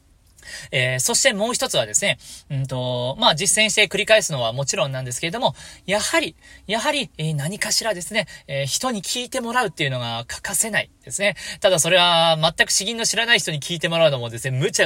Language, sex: Japanese, male